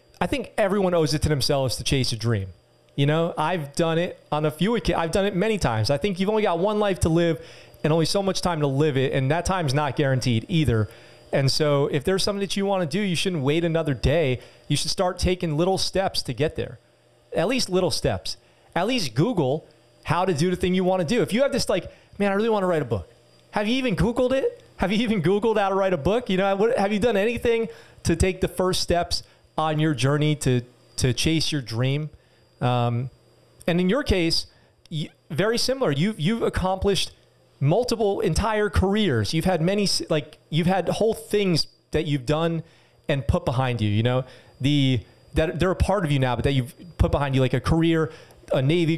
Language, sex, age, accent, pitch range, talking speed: English, male, 30-49, American, 135-190 Hz, 225 wpm